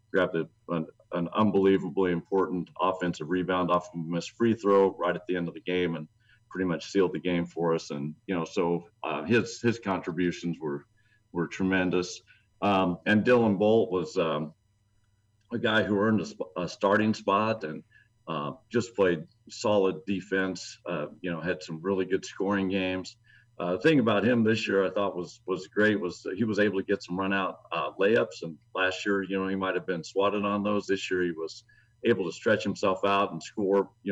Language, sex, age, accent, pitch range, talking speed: English, male, 50-69, American, 85-105 Hz, 200 wpm